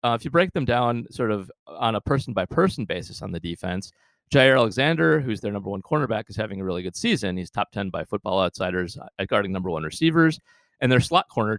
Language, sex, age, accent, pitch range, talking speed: English, male, 30-49, American, 100-135 Hz, 225 wpm